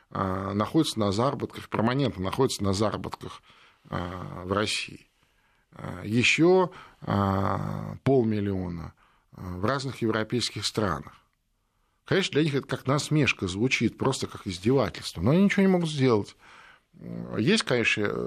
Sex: male